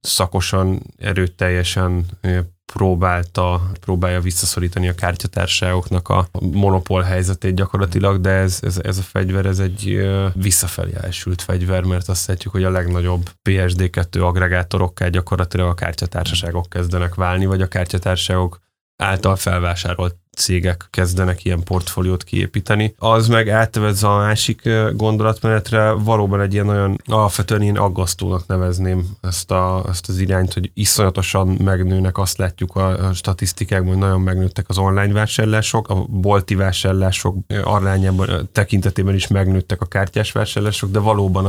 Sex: male